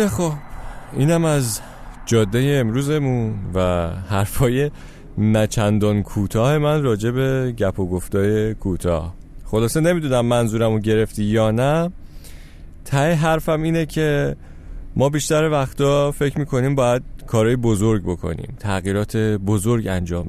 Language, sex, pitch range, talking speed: Persian, male, 95-130 Hz, 110 wpm